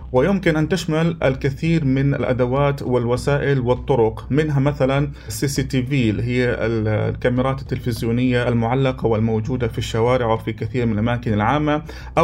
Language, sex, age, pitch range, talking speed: Arabic, male, 30-49, 115-140 Hz, 125 wpm